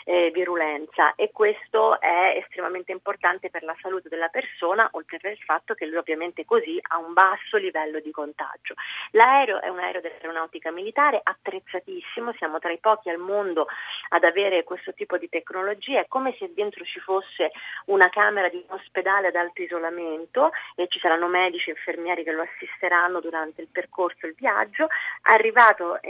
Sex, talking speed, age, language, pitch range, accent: female, 170 wpm, 30-49, Italian, 170-200 Hz, native